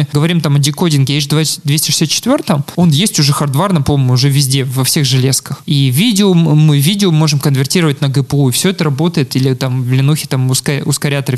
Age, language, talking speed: 20-39, Russian, 180 wpm